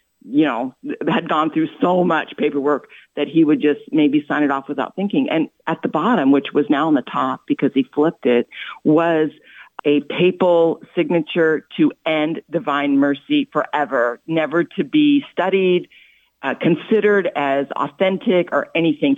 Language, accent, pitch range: English, American, 150-215 Hz